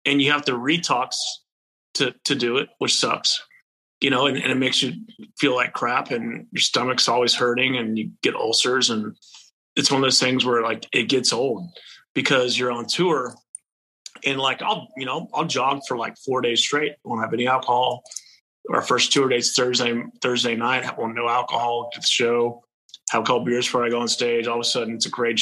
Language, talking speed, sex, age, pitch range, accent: English, 210 wpm, male, 30-49, 120-140 Hz, American